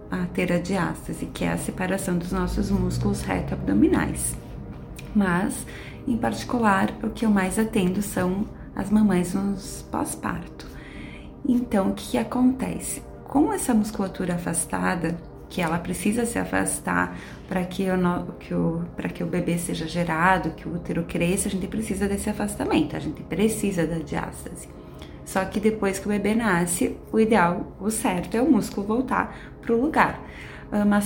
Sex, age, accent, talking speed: female, 20-39, Brazilian, 150 wpm